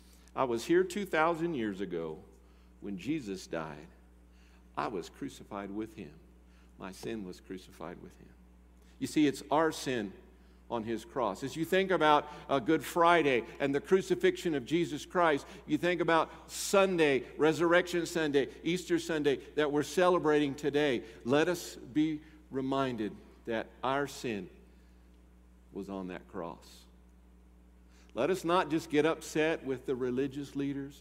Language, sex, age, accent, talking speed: English, male, 50-69, American, 145 wpm